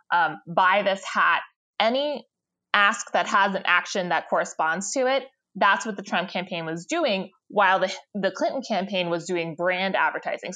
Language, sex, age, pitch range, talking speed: English, female, 20-39, 180-220 Hz, 170 wpm